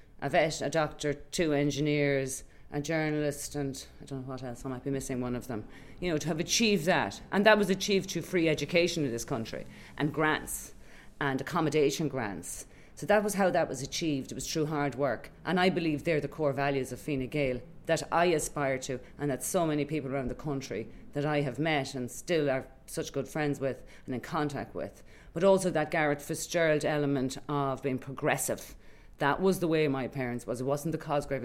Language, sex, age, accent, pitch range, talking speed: English, female, 40-59, Irish, 135-160 Hz, 210 wpm